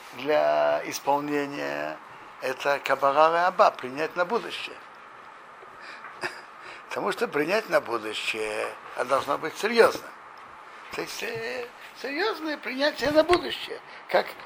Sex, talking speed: male, 85 wpm